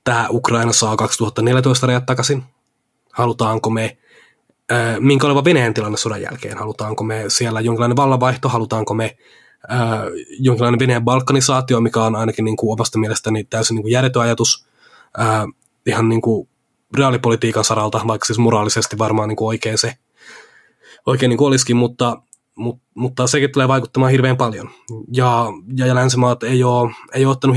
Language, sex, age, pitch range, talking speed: Finnish, male, 20-39, 110-125 Hz, 155 wpm